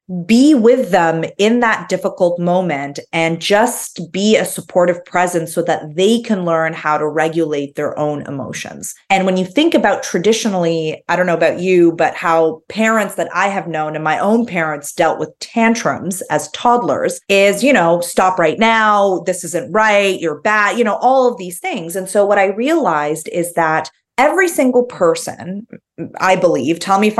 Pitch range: 165-210 Hz